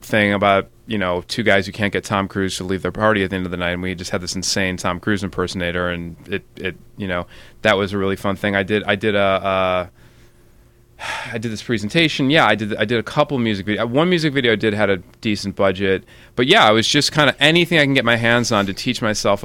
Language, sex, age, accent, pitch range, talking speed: English, male, 30-49, American, 100-120 Hz, 265 wpm